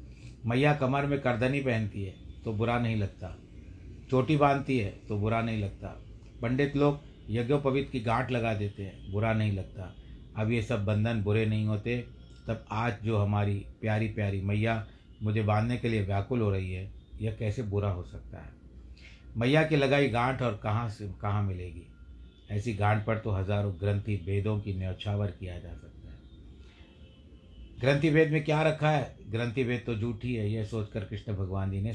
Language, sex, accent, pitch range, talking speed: Hindi, male, native, 85-115 Hz, 170 wpm